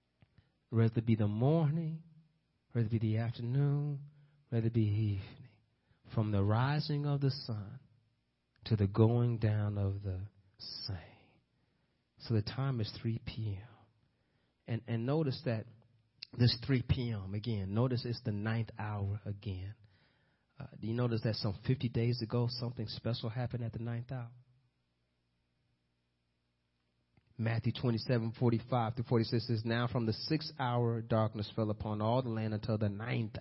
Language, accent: English, American